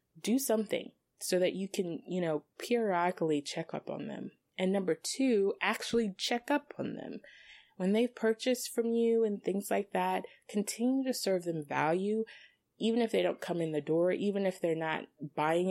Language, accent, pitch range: English, American, 155-210 Hz